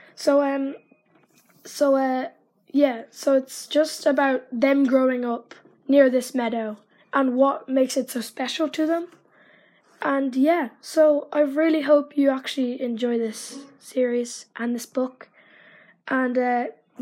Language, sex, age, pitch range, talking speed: English, female, 10-29, 245-275 Hz, 140 wpm